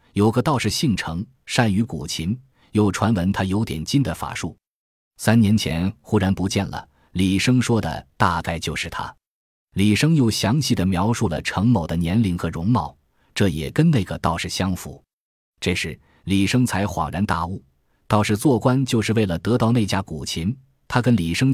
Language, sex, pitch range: Chinese, male, 85-115 Hz